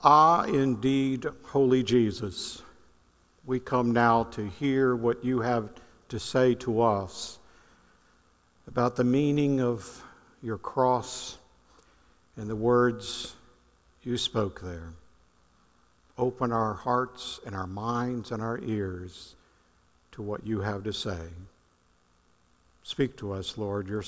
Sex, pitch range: male, 90-125 Hz